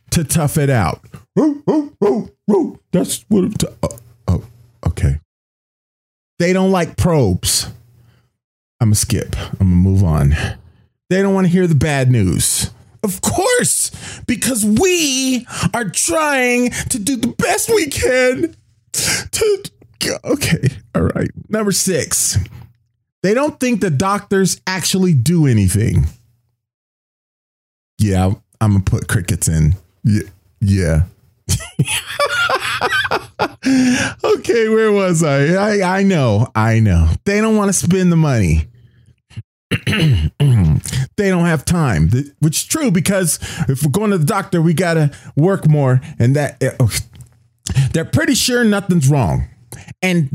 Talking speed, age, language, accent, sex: 125 wpm, 40-59, English, American, male